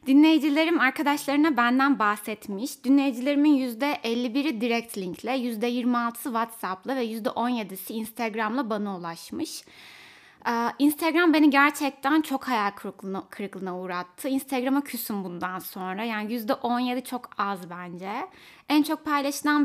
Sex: female